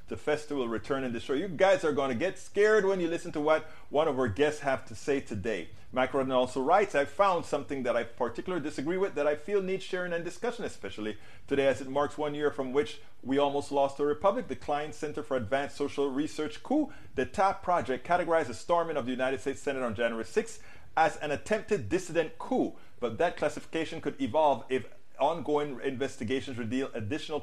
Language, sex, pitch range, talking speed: English, male, 130-160 Hz, 210 wpm